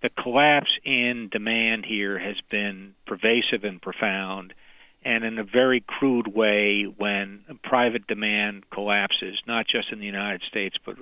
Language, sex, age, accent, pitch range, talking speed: English, male, 50-69, American, 100-125 Hz, 145 wpm